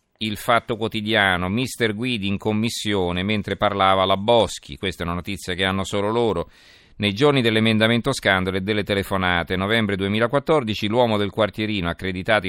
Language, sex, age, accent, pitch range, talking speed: Italian, male, 40-59, native, 95-110 Hz, 155 wpm